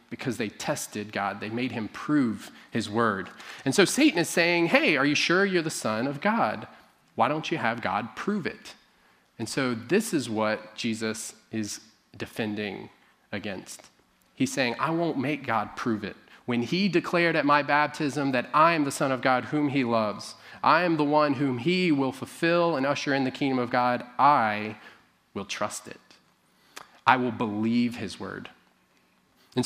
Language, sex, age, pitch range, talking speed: English, male, 30-49, 115-150 Hz, 180 wpm